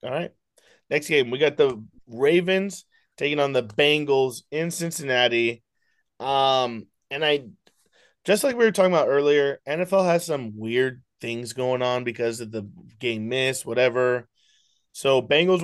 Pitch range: 125-165 Hz